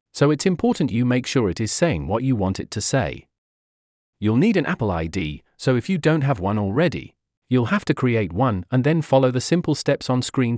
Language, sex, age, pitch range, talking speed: English, male, 40-59, 105-145 Hz, 225 wpm